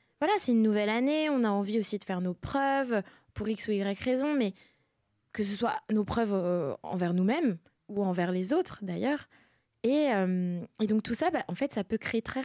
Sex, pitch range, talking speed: female, 180-230 Hz, 210 wpm